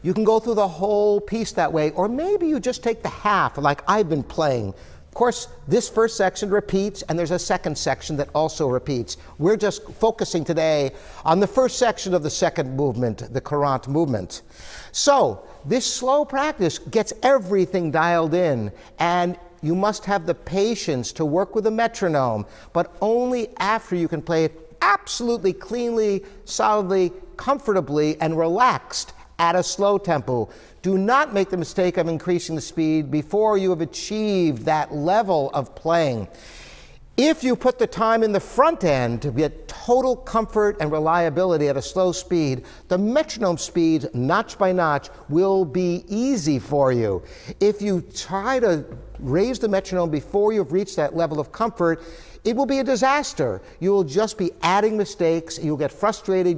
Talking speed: 170 wpm